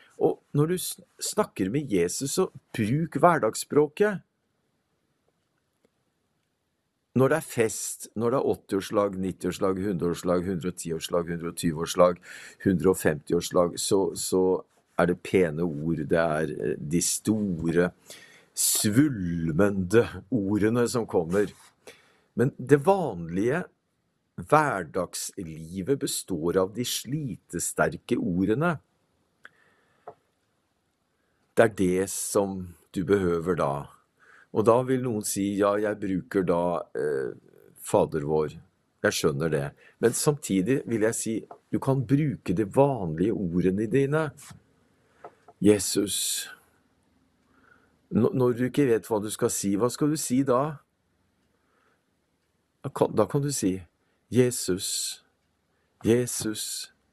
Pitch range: 90-130 Hz